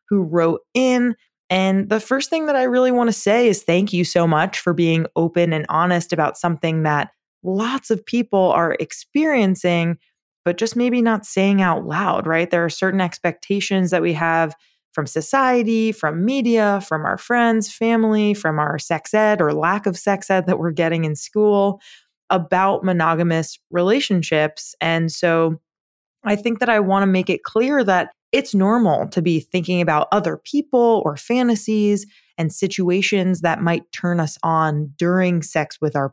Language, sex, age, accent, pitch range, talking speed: English, female, 20-39, American, 165-210 Hz, 175 wpm